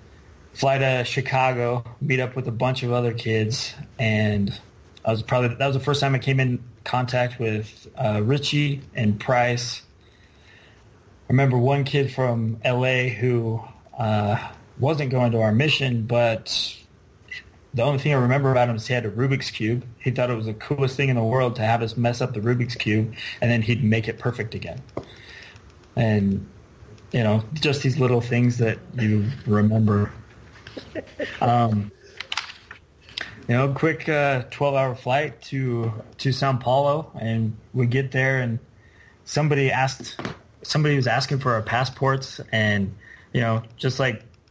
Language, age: English, 30-49